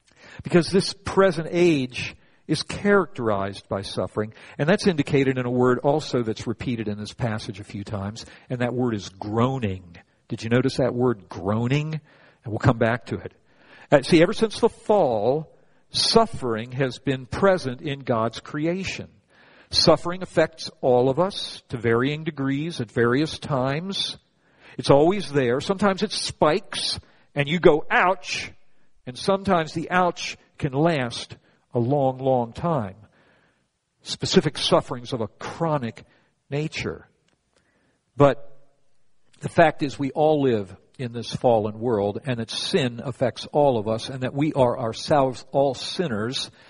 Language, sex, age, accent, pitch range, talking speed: English, male, 50-69, American, 120-160 Hz, 150 wpm